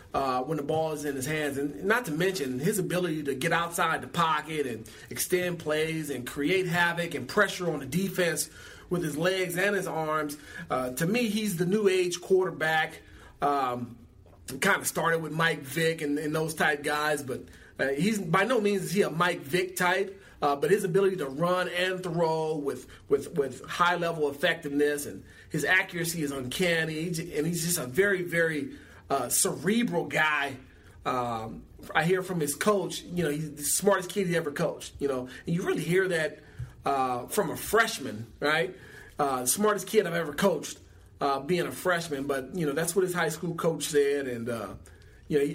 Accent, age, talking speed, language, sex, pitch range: American, 30-49, 195 wpm, English, male, 145-180 Hz